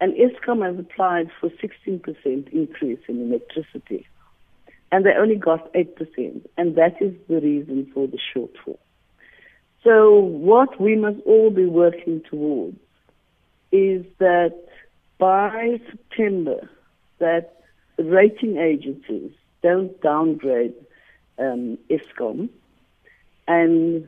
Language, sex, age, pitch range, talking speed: English, female, 60-79, 165-235 Hz, 105 wpm